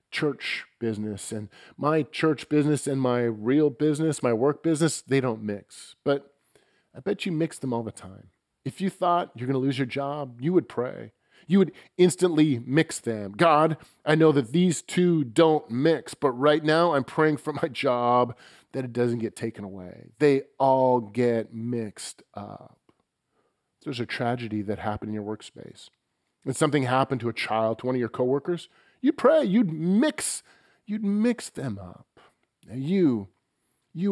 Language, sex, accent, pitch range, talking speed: English, male, American, 120-165 Hz, 170 wpm